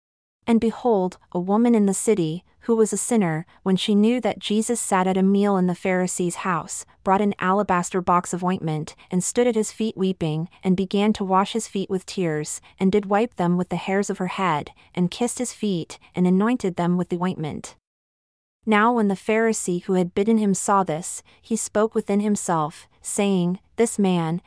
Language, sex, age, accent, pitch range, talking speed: English, female, 30-49, American, 175-215 Hz, 200 wpm